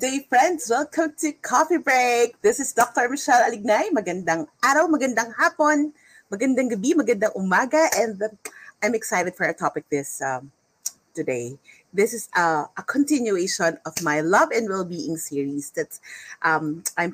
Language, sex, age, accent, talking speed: English, female, 30-49, Filipino, 150 wpm